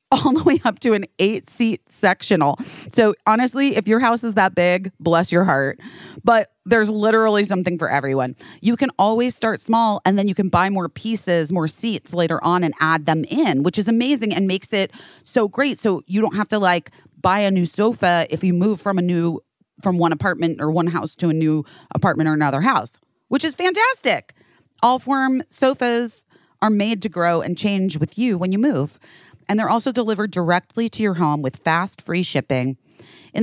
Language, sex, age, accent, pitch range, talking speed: English, female, 30-49, American, 150-215 Hz, 200 wpm